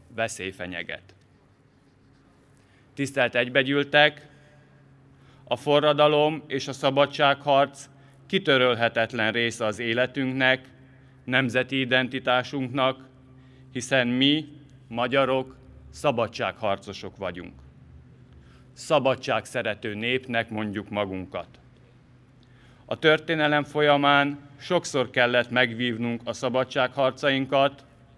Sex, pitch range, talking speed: male, 120-140 Hz, 70 wpm